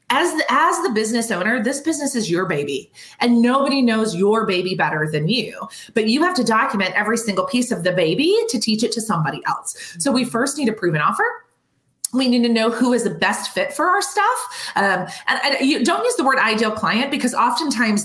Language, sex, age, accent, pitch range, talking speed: English, female, 30-49, American, 190-275 Hz, 225 wpm